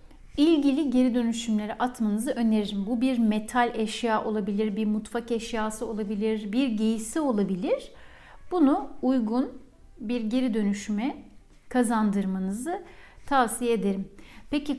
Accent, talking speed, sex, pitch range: native, 105 wpm, female, 220-285 Hz